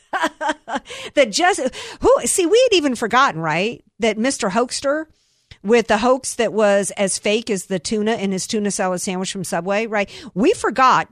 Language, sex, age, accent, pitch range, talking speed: English, female, 50-69, American, 180-235 Hz, 175 wpm